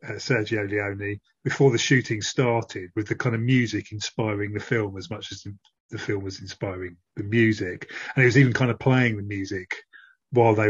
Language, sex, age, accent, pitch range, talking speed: English, male, 30-49, British, 105-125 Hz, 195 wpm